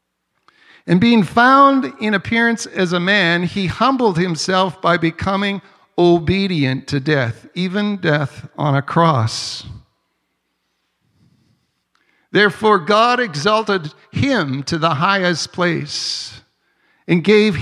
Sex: male